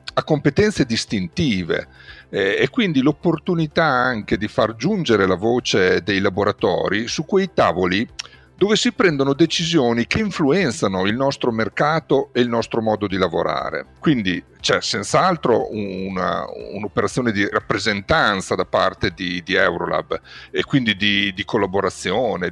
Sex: male